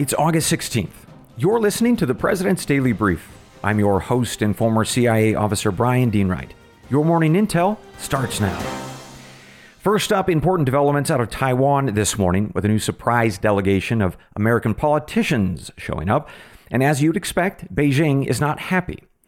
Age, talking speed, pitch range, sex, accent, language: 40-59, 160 wpm, 105-160 Hz, male, American, English